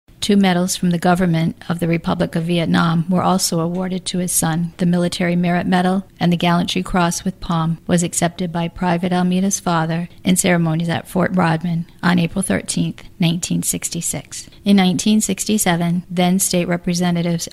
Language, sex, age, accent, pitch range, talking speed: English, female, 40-59, American, 170-185 Hz, 160 wpm